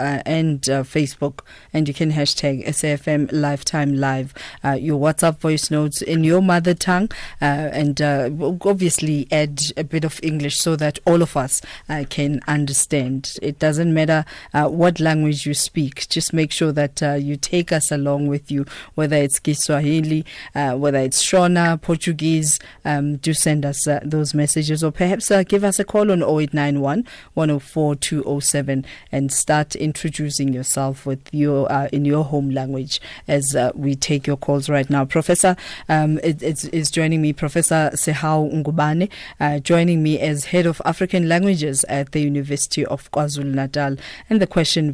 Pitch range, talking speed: 145-165 Hz, 170 wpm